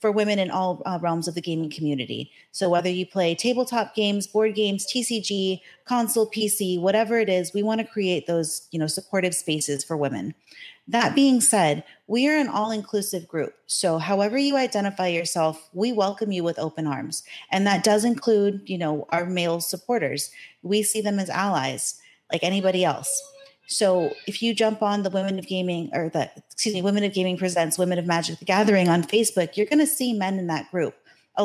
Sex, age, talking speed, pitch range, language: female, 30-49, 195 wpm, 175-215 Hz, English